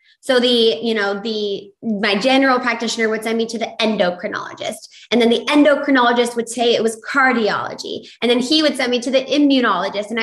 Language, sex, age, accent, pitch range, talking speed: English, female, 20-39, American, 205-250 Hz, 195 wpm